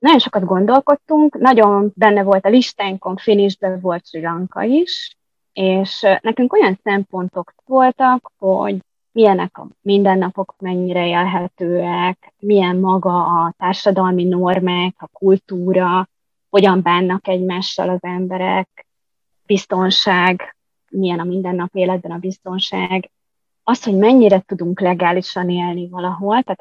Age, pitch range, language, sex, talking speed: 20-39, 180-200 Hz, Hungarian, female, 115 wpm